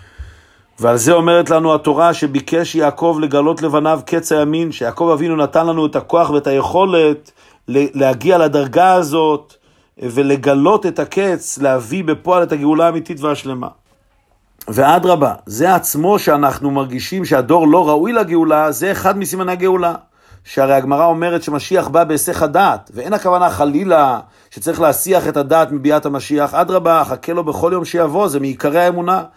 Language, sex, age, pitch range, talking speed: Hebrew, male, 50-69, 140-175 Hz, 140 wpm